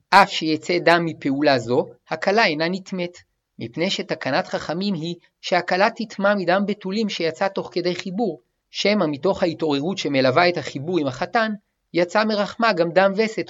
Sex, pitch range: male, 155-195 Hz